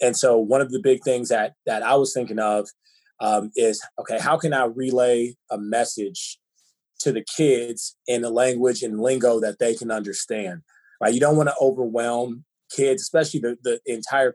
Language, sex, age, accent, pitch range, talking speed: English, male, 20-39, American, 115-145 Hz, 190 wpm